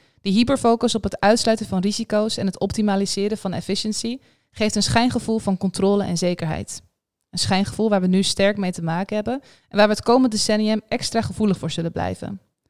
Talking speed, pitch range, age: 190 wpm, 190-225 Hz, 20-39